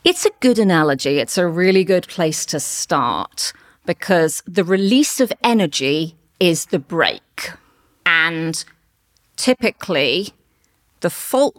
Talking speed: 120 wpm